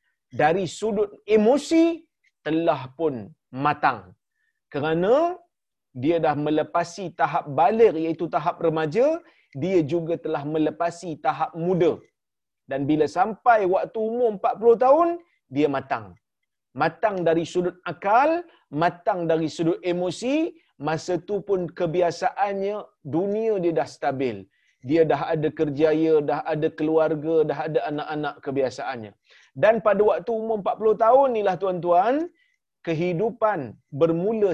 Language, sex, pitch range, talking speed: Malayalam, male, 160-220 Hz, 115 wpm